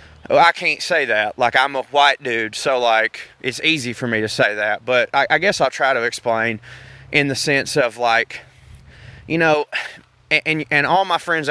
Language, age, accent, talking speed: English, 20-39, American, 210 wpm